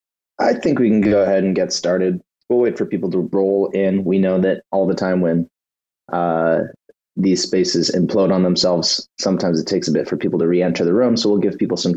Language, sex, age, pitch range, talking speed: English, male, 30-49, 90-120 Hz, 230 wpm